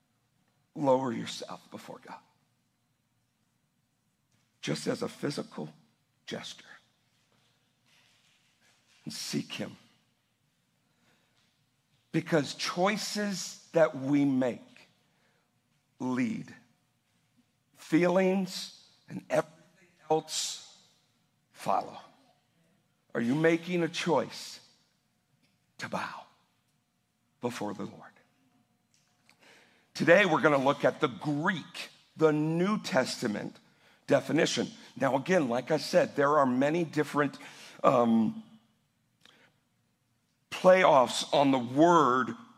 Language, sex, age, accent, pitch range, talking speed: English, male, 60-79, American, 145-180 Hz, 85 wpm